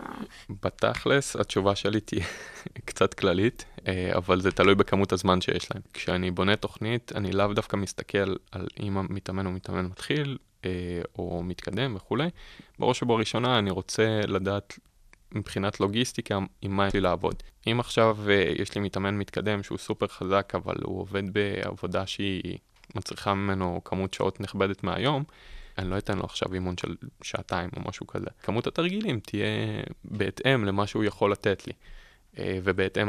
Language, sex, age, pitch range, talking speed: Hebrew, male, 20-39, 95-110 Hz, 150 wpm